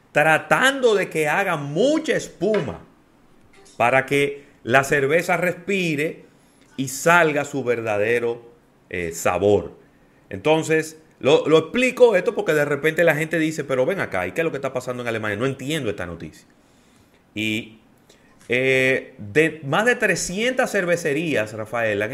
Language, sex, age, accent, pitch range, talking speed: Spanish, male, 30-49, Venezuelan, 115-150 Hz, 145 wpm